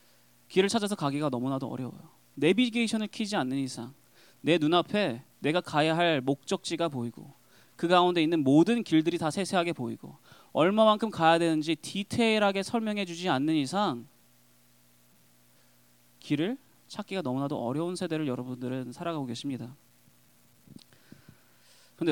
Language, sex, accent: Korean, male, native